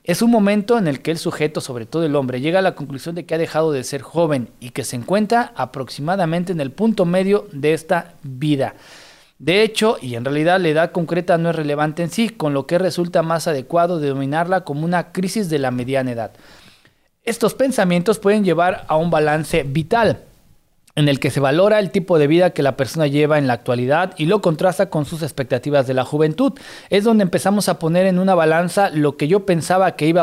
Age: 40-59